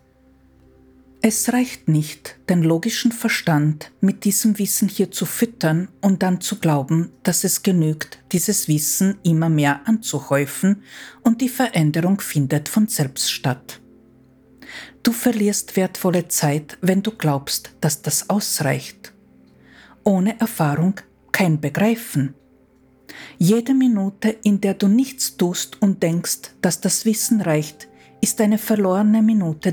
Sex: female